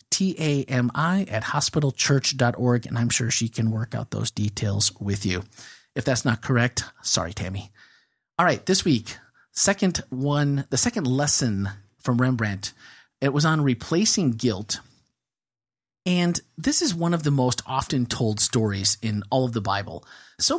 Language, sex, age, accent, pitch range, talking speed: English, male, 30-49, American, 110-155 Hz, 150 wpm